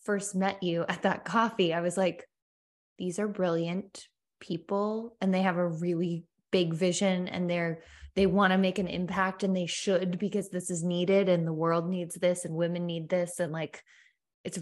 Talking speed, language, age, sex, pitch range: 195 wpm, English, 20-39, female, 170-205 Hz